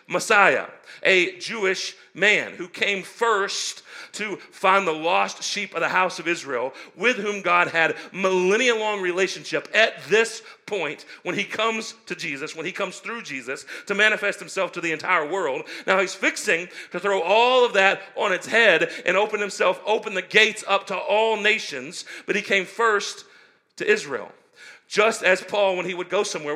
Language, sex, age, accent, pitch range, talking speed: English, male, 40-59, American, 165-215 Hz, 180 wpm